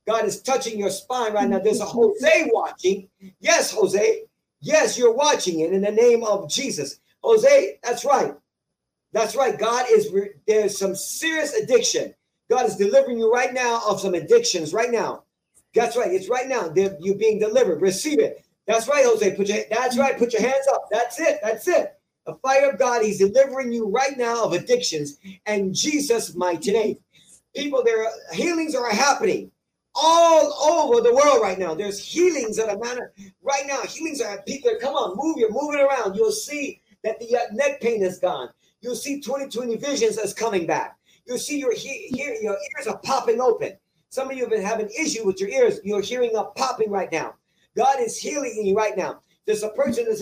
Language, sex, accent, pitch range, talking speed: English, male, American, 205-295 Hz, 200 wpm